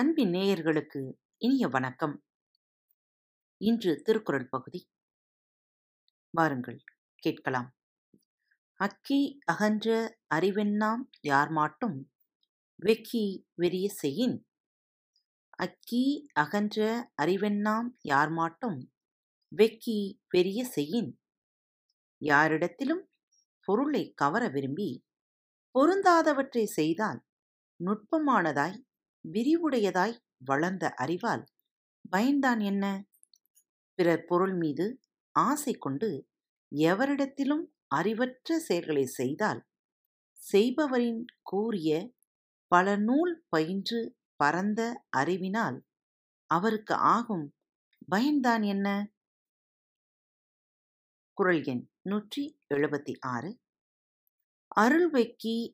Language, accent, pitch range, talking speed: Tamil, native, 160-240 Hz, 60 wpm